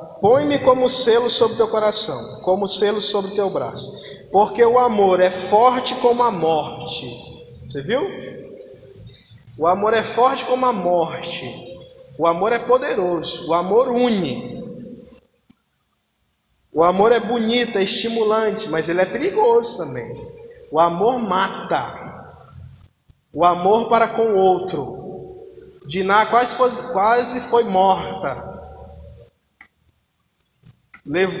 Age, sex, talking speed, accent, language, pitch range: 20-39, male, 115 wpm, Brazilian, Portuguese, 185-240 Hz